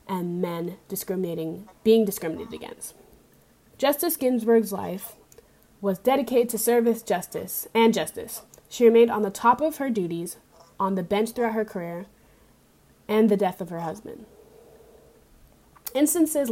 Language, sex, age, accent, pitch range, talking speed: English, female, 20-39, American, 185-230 Hz, 135 wpm